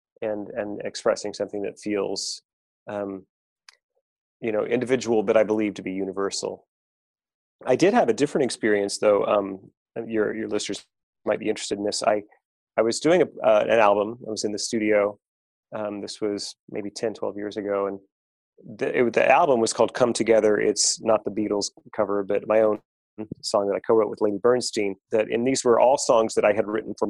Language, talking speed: English, 195 wpm